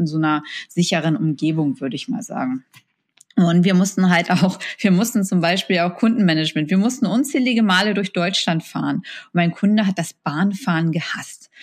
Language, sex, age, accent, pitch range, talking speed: German, female, 20-39, German, 165-200 Hz, 175 wpm